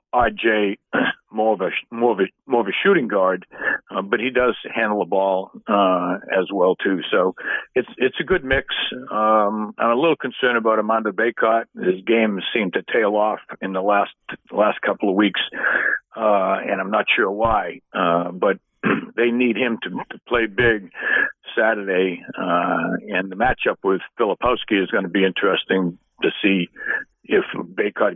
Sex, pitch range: male, 95-115 Hz